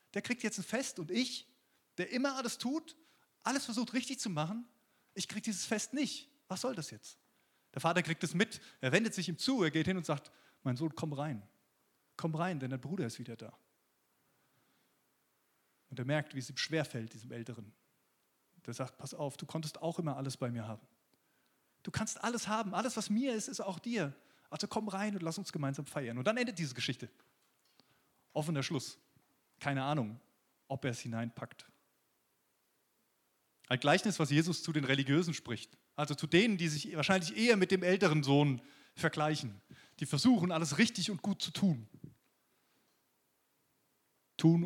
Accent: German